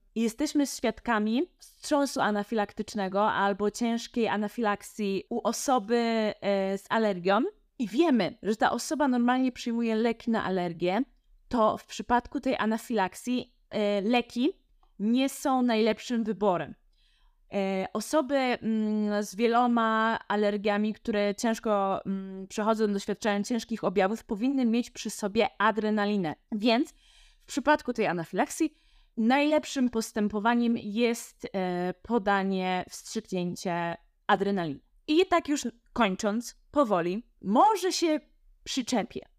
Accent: native